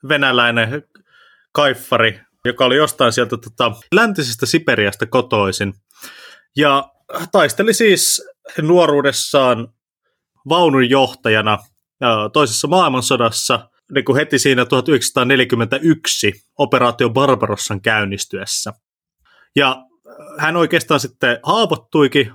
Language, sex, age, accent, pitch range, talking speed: Finnish, male, 20-39, native, 110-140 Hz, 80 wpm